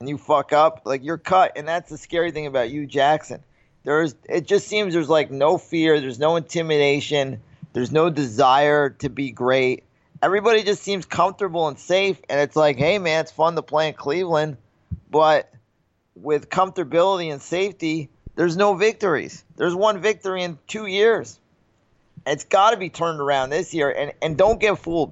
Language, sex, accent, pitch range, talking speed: English, male, American, 130-165 Hz, 180 wpm